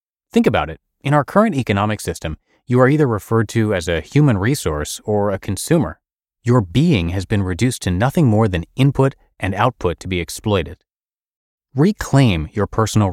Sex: male